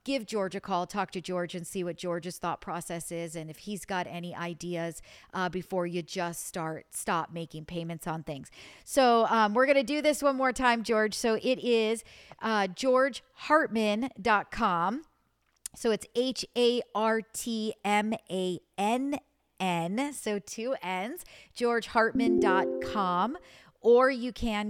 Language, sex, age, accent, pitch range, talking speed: English, female, 40-59, American, 180-235 Hz, 135 wpm